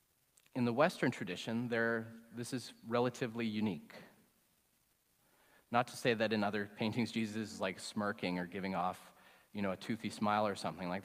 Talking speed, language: 165 wpm, English